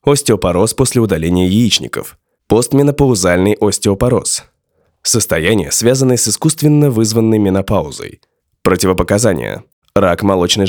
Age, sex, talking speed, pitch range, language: 20-39, male, 85 wpm, 95-125 Hz, Russian